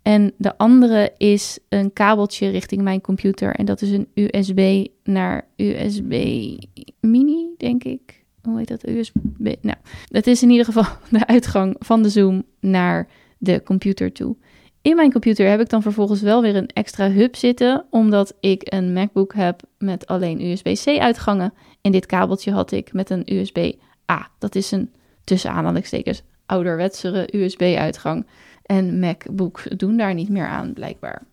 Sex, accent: female, Dutch